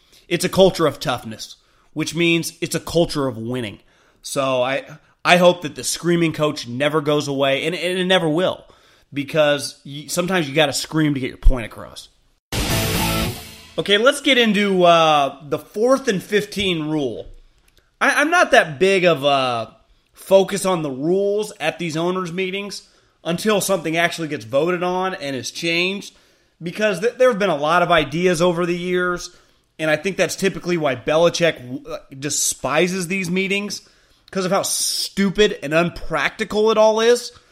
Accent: American